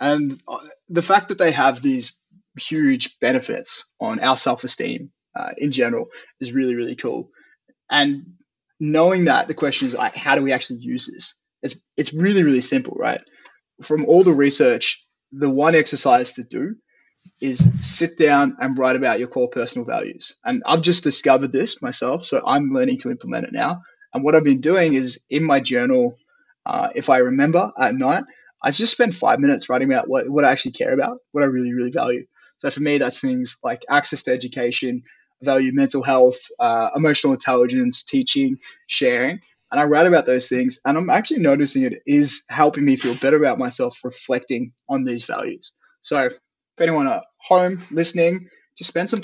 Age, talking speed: 20-39, 185 wpm